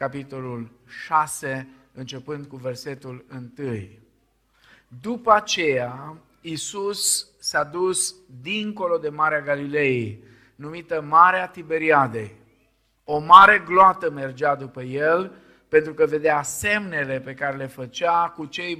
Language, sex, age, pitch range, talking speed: Romanian, male, 50-69, 130-175 Hz, 110 wpm